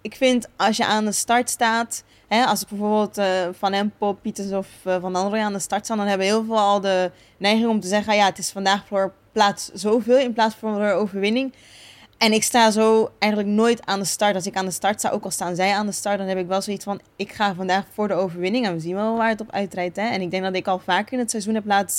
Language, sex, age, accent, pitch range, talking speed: Dutch, female, 20-39, Dutch, 190-220 Hz, 275 wpm